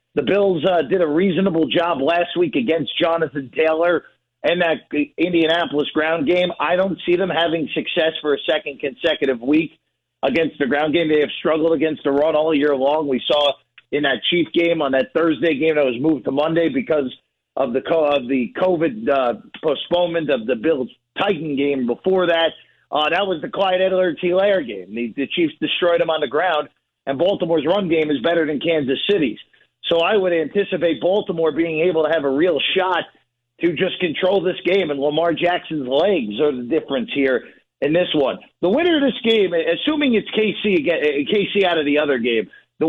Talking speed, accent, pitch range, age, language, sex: 195 wpm, American, 145-180 Hz, 40-59, English, male